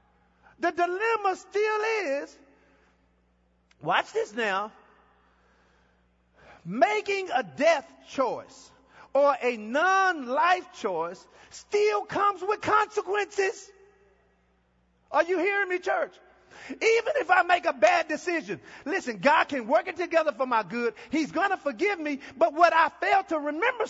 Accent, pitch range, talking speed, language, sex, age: American, 225-365 Hz, 130 wpm, English, male, 40-59